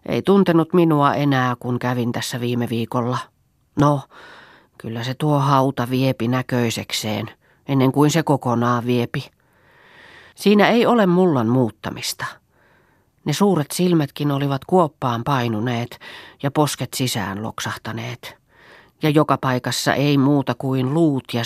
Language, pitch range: Finnish, 120-160 Hz